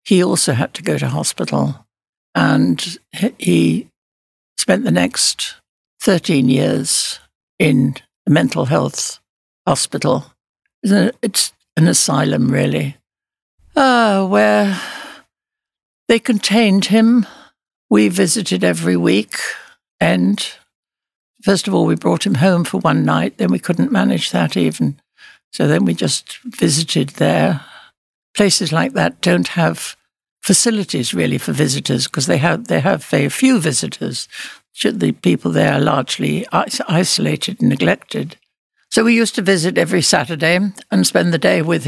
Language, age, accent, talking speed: English, 60-79, British, 135 wpm